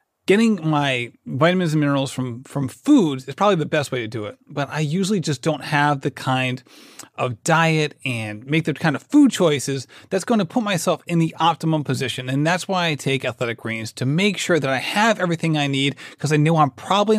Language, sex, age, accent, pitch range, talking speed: English, male, 30-49, American, 140-185 Hz, 220 wpm